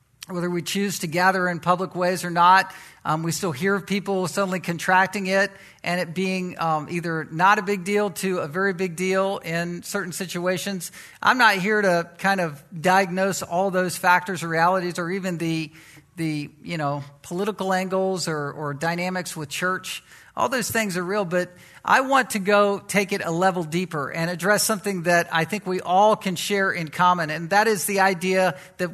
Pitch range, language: 170-205 Hz, English